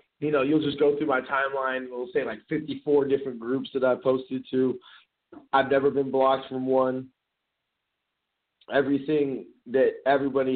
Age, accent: 30-49, American